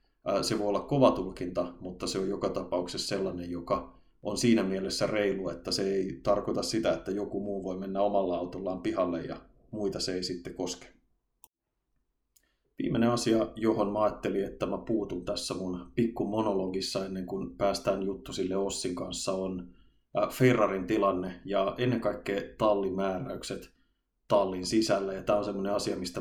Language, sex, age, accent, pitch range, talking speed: Finnish, male, 30-49, native, 90-105 Hz, 160 wpm